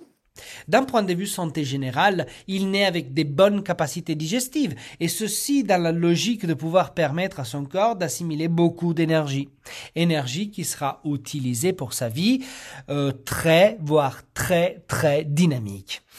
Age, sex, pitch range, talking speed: 40-59, male, 145-185 Hz, 150 wpm